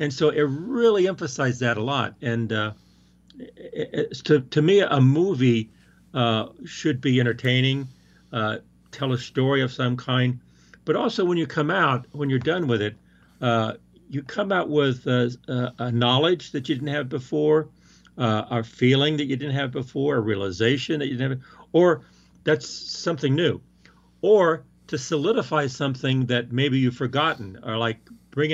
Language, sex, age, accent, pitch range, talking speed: English, male, 50-69, American, 115-145 Hz, 170 wpm